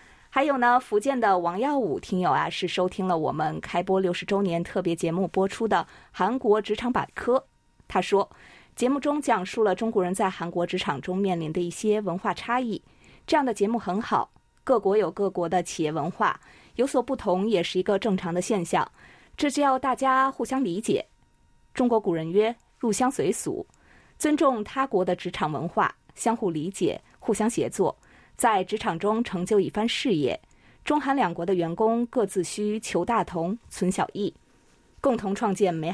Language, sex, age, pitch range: Chinese, female, 20-39, 180-235 Hz